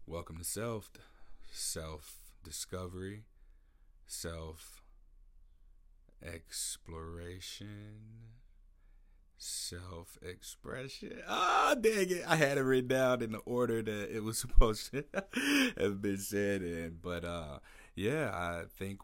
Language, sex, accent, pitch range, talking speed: English, male, American, 85-100 Hz, 100 wpm